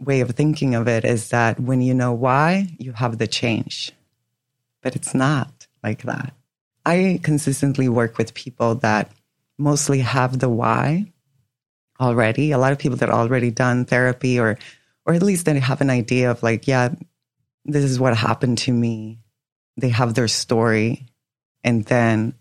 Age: 30-49